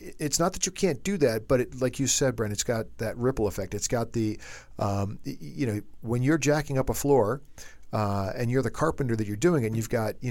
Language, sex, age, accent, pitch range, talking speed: English, male, 50-69, American, 110-140 Hz, 250 wpm